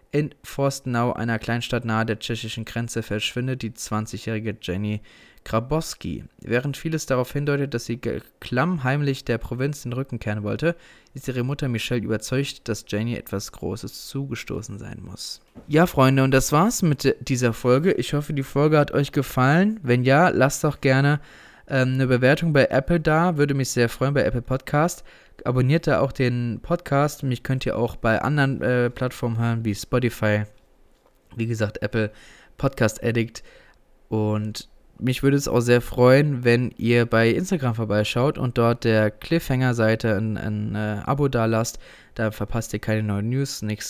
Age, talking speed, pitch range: 20-39, 165 wpm, 110-140 Hz